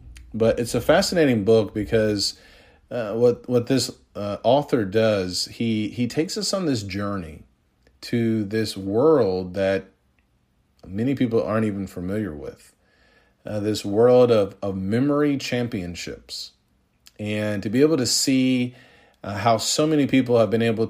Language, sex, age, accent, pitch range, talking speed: English, male, 40-59, American, 95-115 Hz, 145 wpm